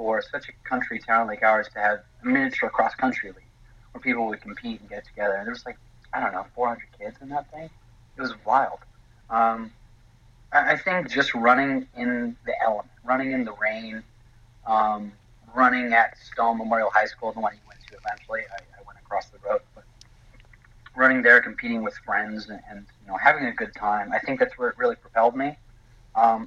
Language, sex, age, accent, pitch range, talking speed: English, male, 30-49, American, 110-125 Hz, 200 wpm